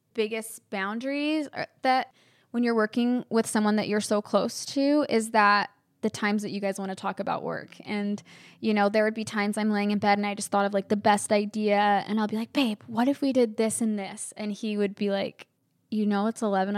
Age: 10-29